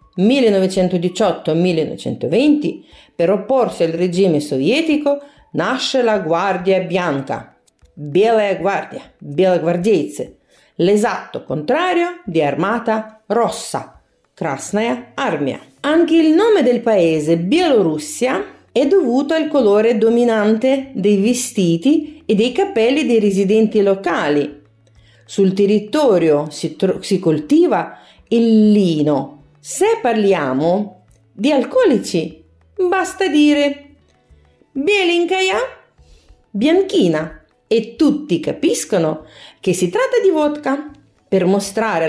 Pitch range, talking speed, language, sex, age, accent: 180-285 Hz, 90 wpm, Italian, female, 40-59, native